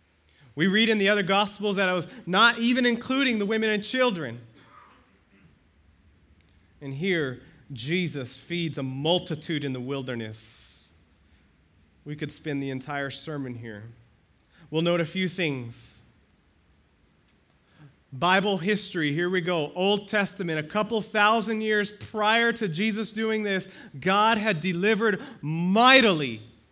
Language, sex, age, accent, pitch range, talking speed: English, male, 30-49, American, 135-205 Hz, 130 wpm